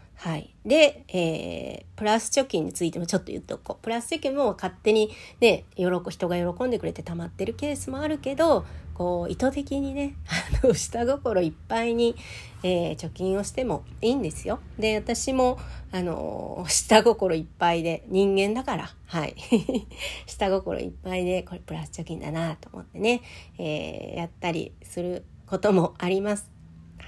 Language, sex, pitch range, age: Japanese, female, 170-235 Hz, 40-59